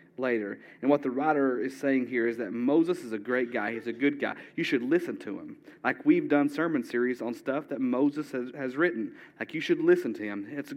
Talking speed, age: 240 wpm, 40-59